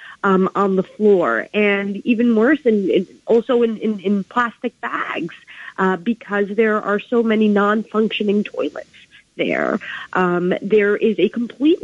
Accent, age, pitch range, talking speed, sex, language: American, 40-59, 200-290 Hz, 140 wpm, female, English